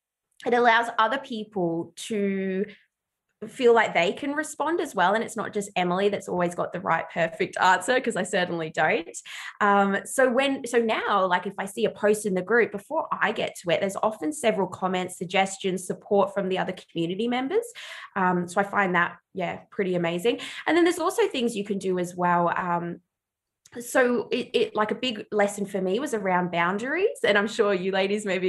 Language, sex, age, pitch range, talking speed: English, female, 20-39, 185-240 Hz, 200 wpm